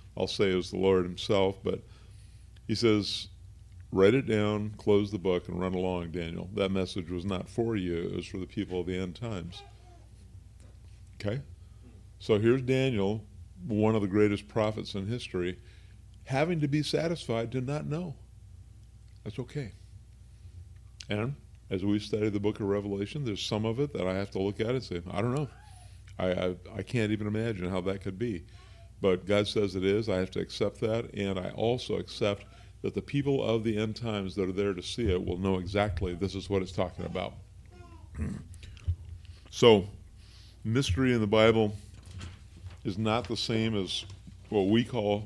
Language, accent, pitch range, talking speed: English, American, 95-110 Hz, 180 wpm